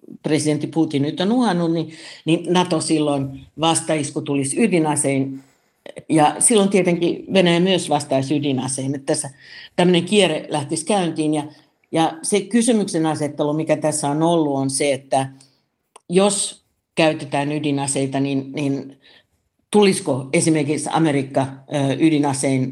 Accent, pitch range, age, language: native, 140-165 Hz, 60-79, Finnish